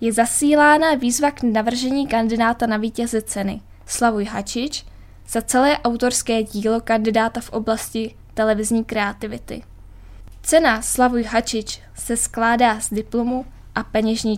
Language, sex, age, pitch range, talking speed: Czech, female, 10-29, 215-255 Hz, 120 wpm